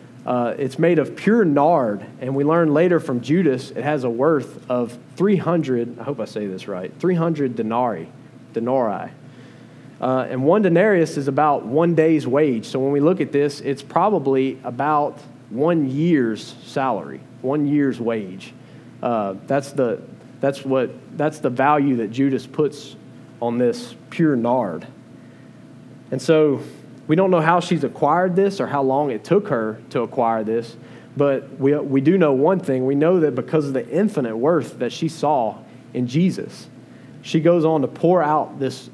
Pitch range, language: 125-155 Hz, English